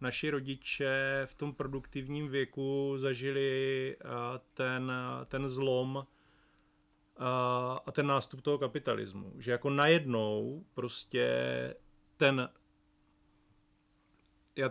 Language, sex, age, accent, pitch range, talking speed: Czech, male, 30-49, native, 125-140 Hz, 85 wpm